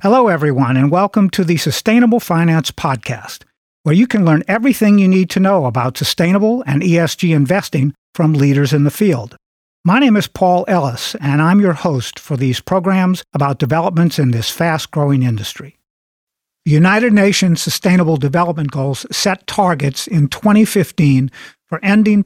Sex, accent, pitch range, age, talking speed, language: male, American, 150-195 Hz, 50-69, 155 wpm, English